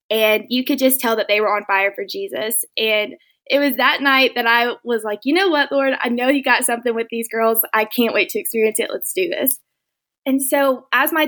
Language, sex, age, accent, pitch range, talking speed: English, female, 20-39, American, 225-275 Hz, 245 wpm